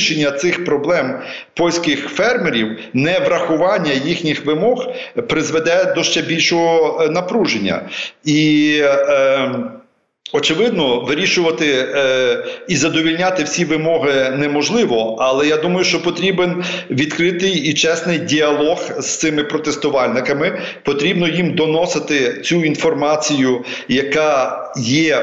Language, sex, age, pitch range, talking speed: Ukrainian, male, 40-59, 145-175 Hz, 100 wpm